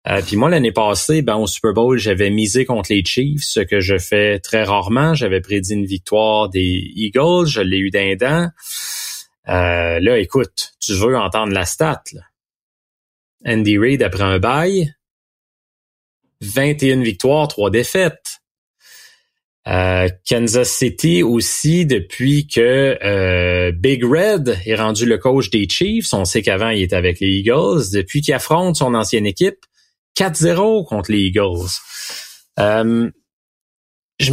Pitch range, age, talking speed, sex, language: 100-140 Hz, 30-49, 145 wpm, male, French